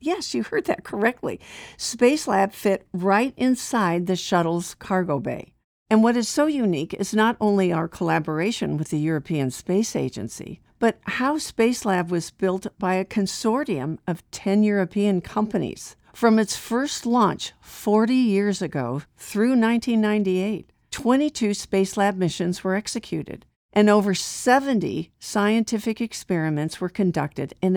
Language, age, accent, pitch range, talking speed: English, 50-69, American, 170-220 Hz, 135 wpm